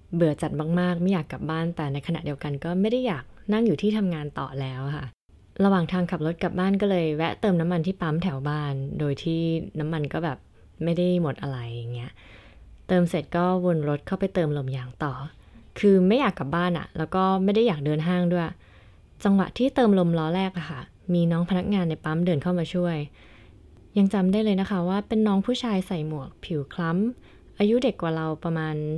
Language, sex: English, female